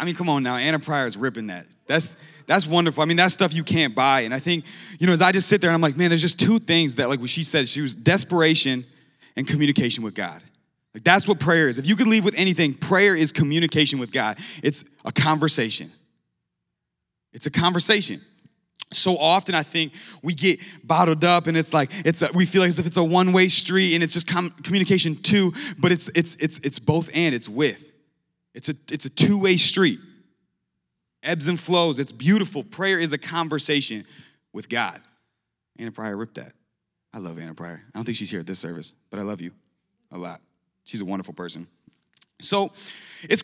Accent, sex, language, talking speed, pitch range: American, male, English, 215 wpm, 140-190 Hz